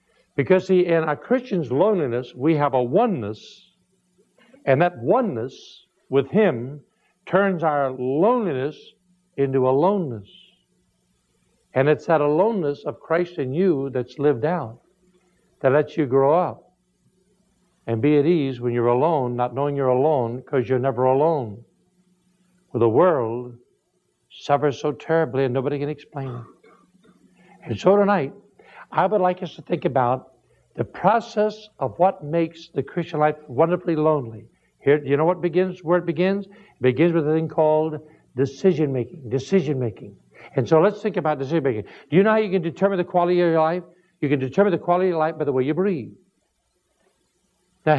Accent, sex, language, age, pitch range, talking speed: American, male, English, 60-79, 135-185 Hz, 160 wpm